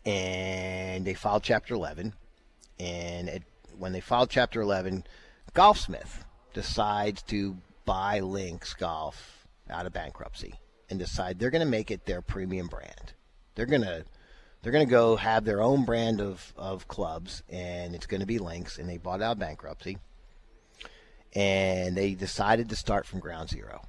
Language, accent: English, American